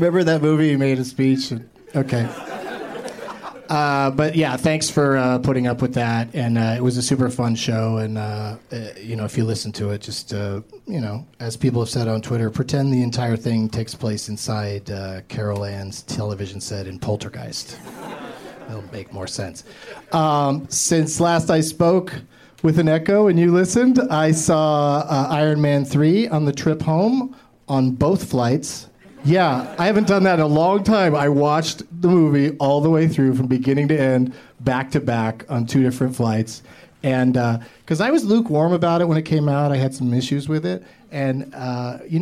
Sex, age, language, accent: male, 30-49, English, American